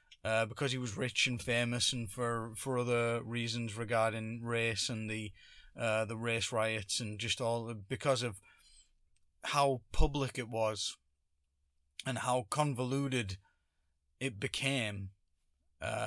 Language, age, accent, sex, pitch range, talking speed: English, 20-39, British, male, 110-140 Hz, 135 wpm